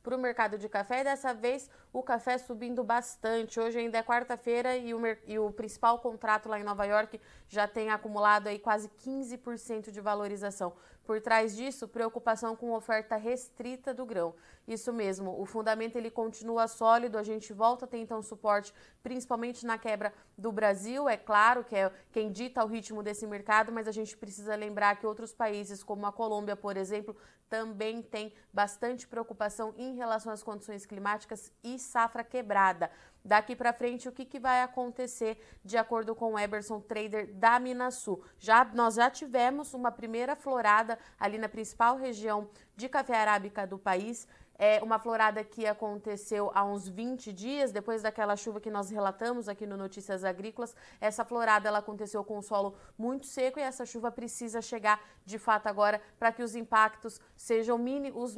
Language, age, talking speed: Portuguese, 20-39, 180 wpm